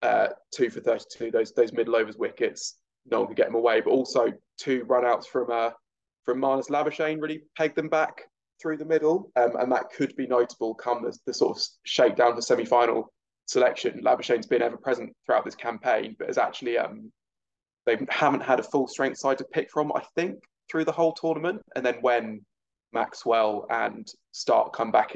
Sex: male